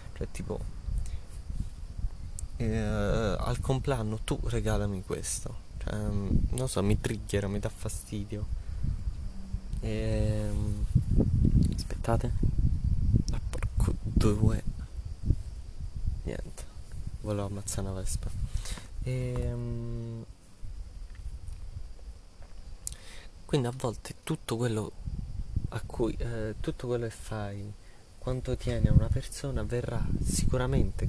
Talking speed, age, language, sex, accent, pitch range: 95 wpm, 20-39, Italian, male, native, 90-115 Hz